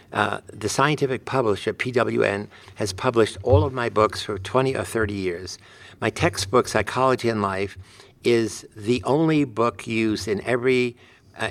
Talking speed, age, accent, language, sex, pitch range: 150 wpm, 60-79, American, English, male, 100-125 Hz